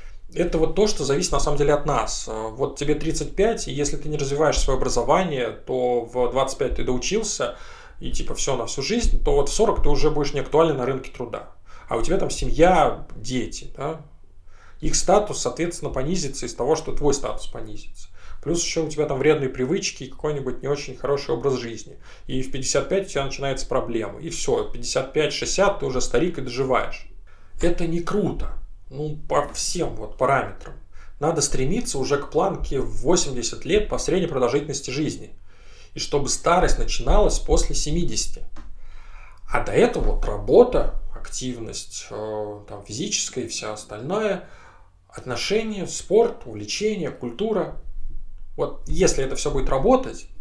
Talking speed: 160 wpm